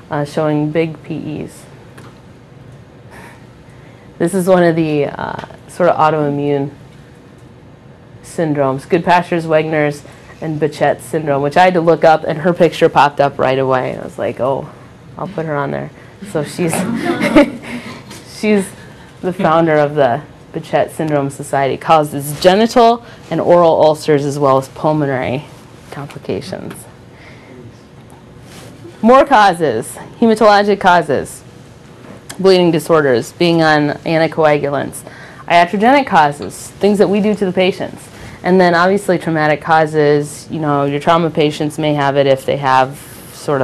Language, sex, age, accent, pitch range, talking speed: English, female, 30-49, American, 140-170 Hz, 130 wpm